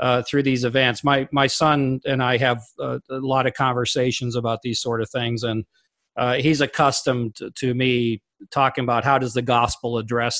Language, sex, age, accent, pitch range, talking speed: English, male, 40-59, American, 120-135 Hz, 195 wpm